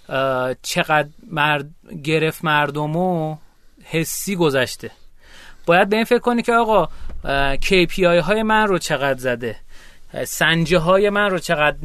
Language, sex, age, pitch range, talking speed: Persian, male, 30-49, 150-205 Hz, 120 wpm